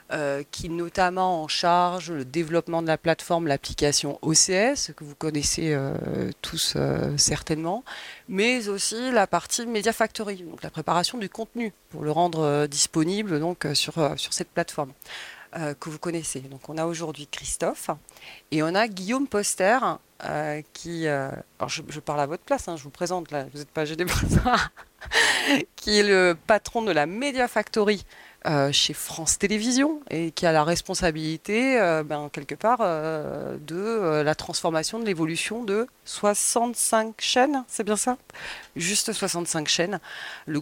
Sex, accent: female, French